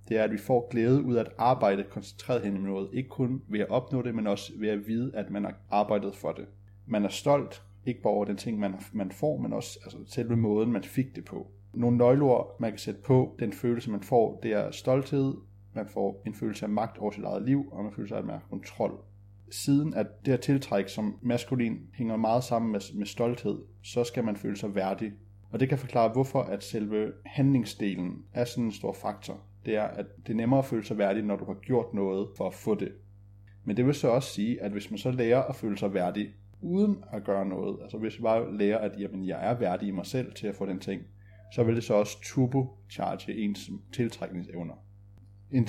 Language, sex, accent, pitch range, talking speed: Danish, male, native, 100-120 Hz, 230 wpm